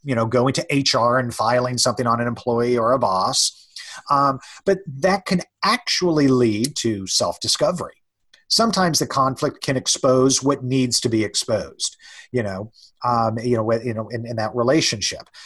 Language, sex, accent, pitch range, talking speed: English, male, American, 120-160 Hz, 165 wpm